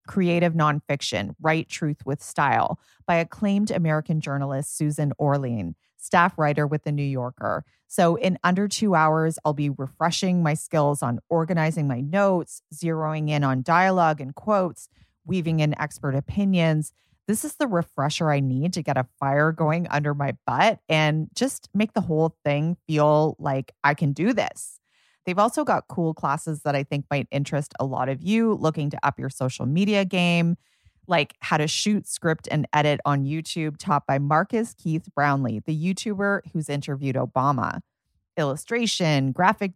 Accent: American